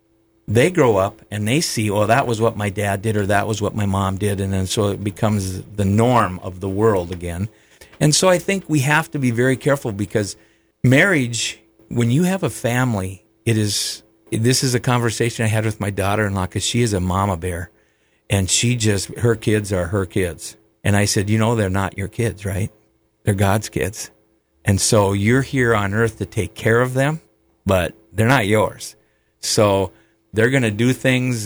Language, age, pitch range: English, 50-69, 100-115 Hz